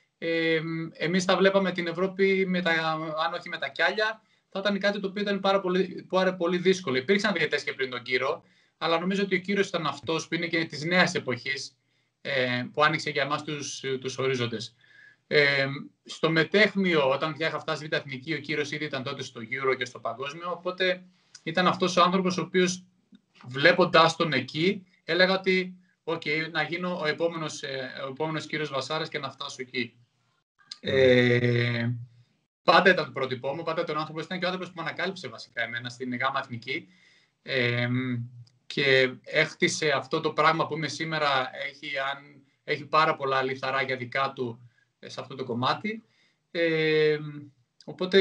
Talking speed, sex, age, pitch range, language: 175 wpm, male, 30-49, 135-180 Hz, Greek